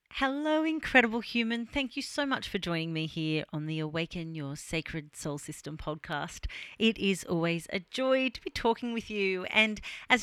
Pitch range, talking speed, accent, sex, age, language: 160-225 Hz, 180 wpm, Australian, female, 40-59, English